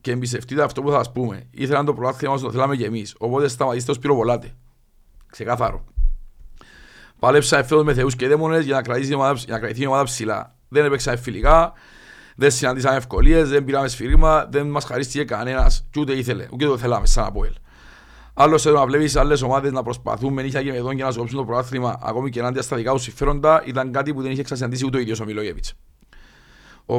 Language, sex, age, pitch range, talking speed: Greek, male, 50-69, 120-145 Hz, 60 wpm